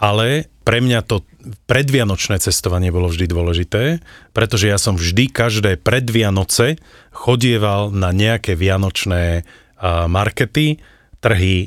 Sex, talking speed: male, 110 wpm